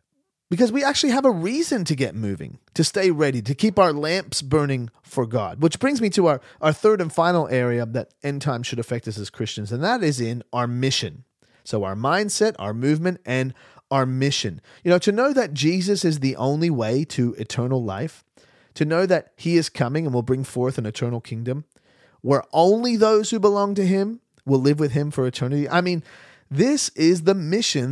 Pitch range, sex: 125-180 Hz, male